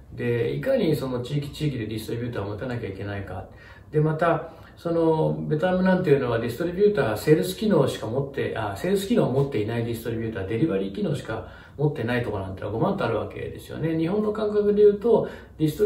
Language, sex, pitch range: Japanese, male, 110-170 Hz